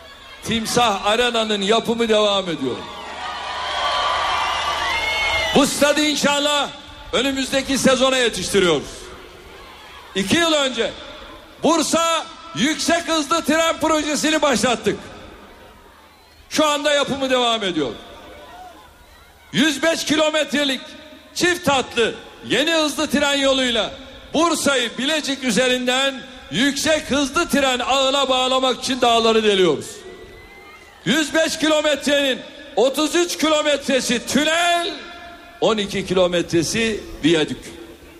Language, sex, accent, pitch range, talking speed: Turkish, male, native, 225-300 Hz, 80 wpm